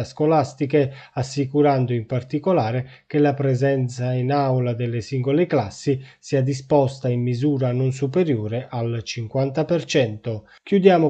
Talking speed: 115 wpm